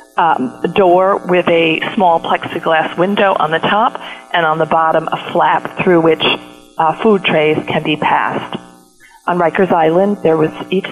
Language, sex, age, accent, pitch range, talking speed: English, female, 40-59, American, 150-180 Hz, 170 wpm